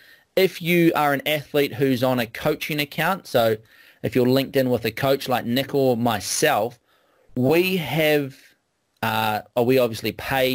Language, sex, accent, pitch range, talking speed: English, male, Australian, 110-135 Hz, 160 wpm